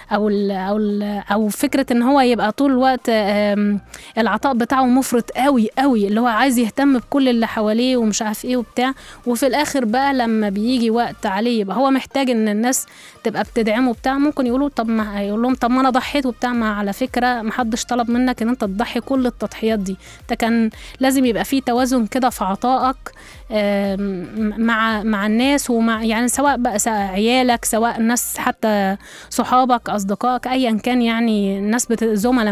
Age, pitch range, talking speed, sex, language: 20-39, 215-260 Hz, 165 wpm, female, Arabic